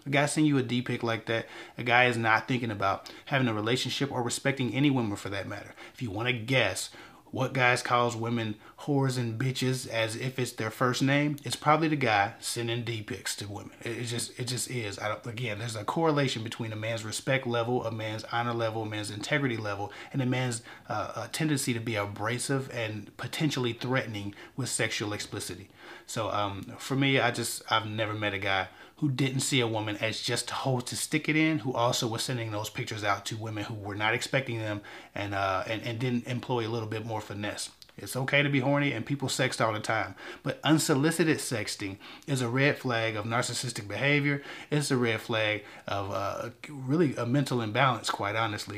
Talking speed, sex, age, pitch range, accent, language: 210 wpm, male, 30-49, 110-130 Hz, American, English